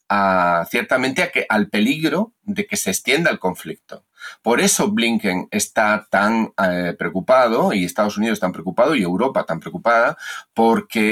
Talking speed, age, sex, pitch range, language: 140 wpm, 40-59, male, 105-160 Hz, Spanish